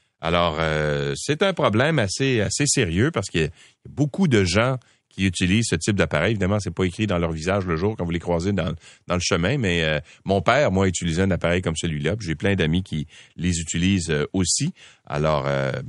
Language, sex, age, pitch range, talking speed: French, male, 40-59, 90-130 Hz, 220 wpm